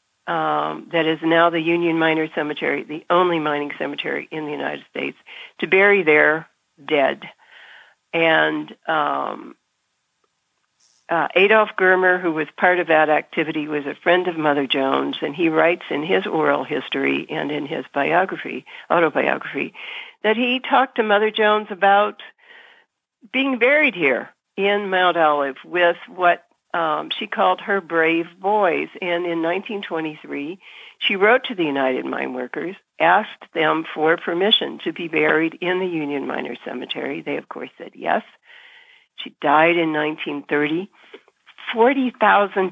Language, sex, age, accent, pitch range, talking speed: English, female, 60-79, American, 150-200 Hz, 145 wpm